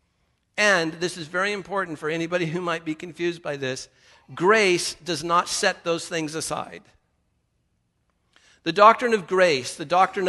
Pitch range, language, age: 145-190 Hz, English, 50-69